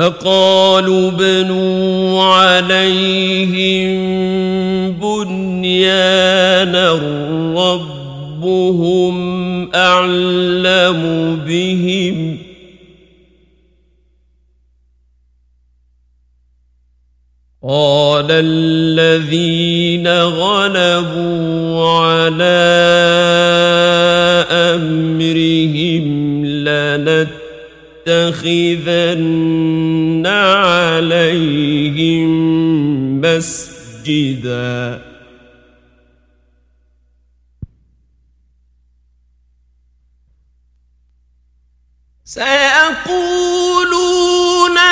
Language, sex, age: Persian, male, 50-69